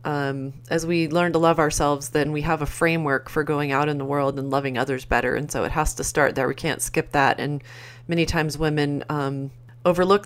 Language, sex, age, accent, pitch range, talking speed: English, female, 30-49, American, 135-155 Hz, 230 wpm